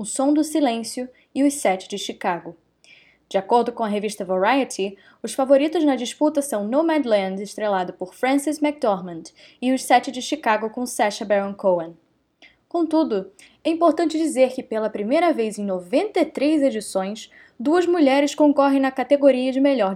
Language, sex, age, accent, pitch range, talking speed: Portuguese, female, 10-29, Brazilian, 205-280 Hz, 155 wpm